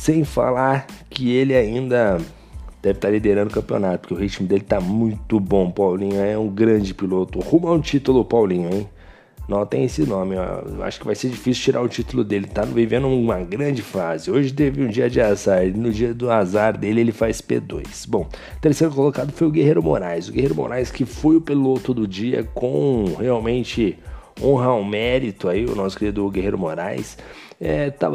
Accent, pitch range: Brazilian, 105-135 Hz